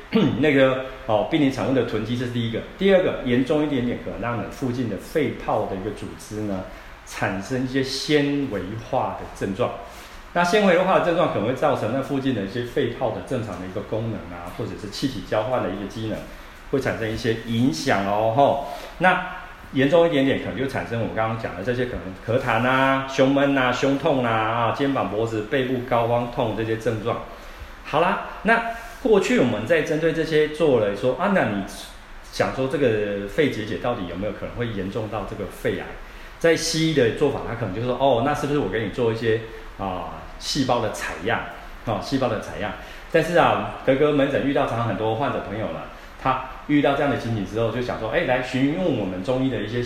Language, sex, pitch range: Chinese, male, 110-140 Hz